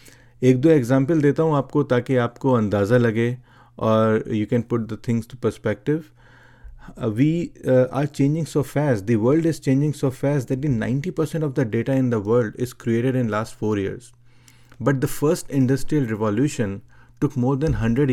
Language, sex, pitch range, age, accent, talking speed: English, male, 120-145 Hz, 40-59, Indian, 165 wpm